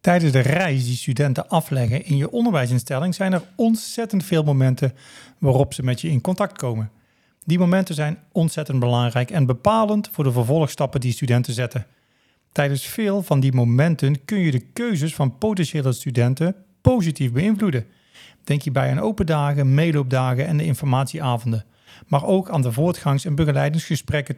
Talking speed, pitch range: 160 wpm, 130-170 Hz